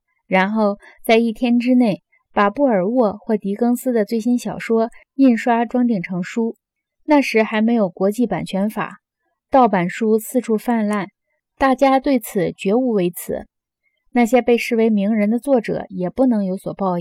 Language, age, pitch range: Chinese, 20-39, 200-245 Hz